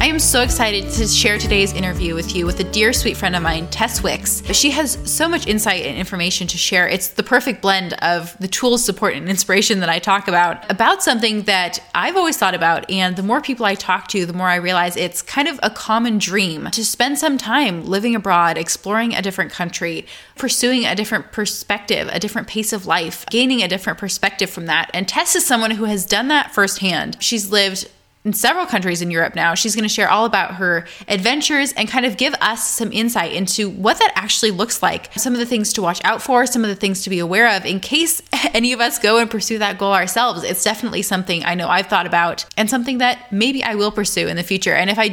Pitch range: 185-235 Hz